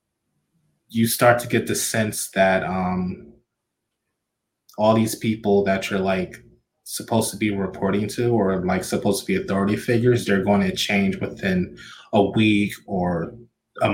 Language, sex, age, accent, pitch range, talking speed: English, male, 20-39, American, 95-115 Hz, 150 wpm